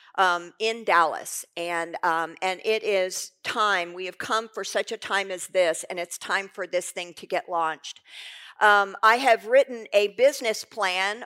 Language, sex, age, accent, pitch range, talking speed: English, female, 50-69, American, 180-225 Hz, 180 wpm